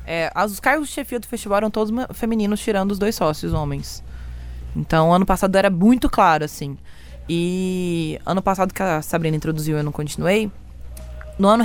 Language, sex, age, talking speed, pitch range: Portuguese, female, 20-39, 175 wpm, 170-220 Hz